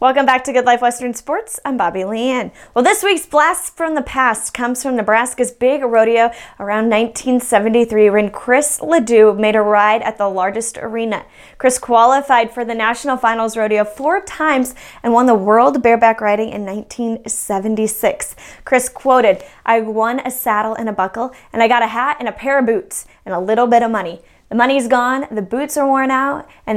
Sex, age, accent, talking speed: female, 10-29, American, 190 wpm